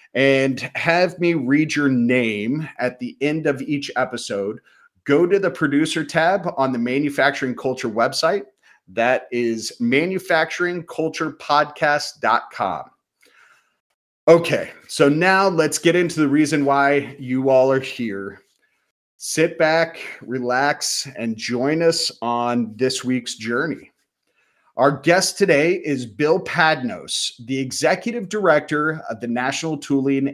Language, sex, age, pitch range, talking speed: English, male, 30-49, 125-160 Hz, 120 wpm